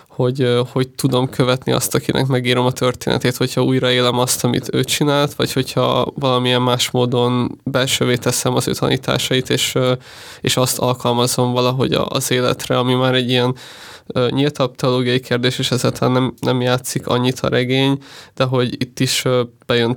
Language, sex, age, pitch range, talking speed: Hungarian, male, 20-39, 125-135 Hz, 155 wpm